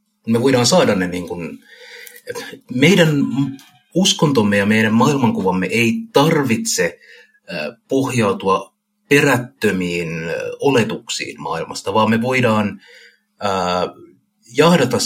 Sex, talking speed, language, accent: male, 85 wpm, Finnish, native